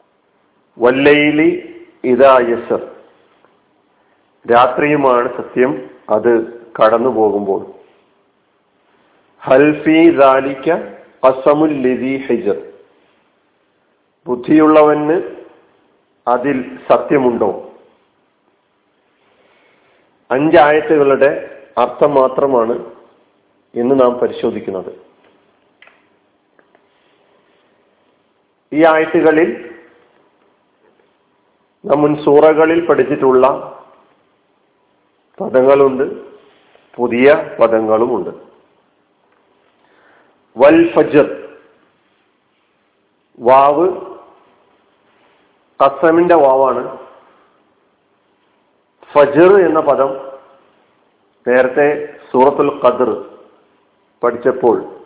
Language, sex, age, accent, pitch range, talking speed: Malayalam, male, 40-59, native, 130-165 Hz, 40 wpm